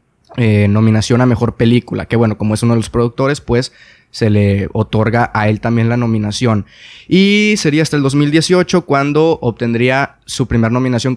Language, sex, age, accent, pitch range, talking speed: Spanish, male, 20-39, Mexican, 115-150 Hz, 170 wpm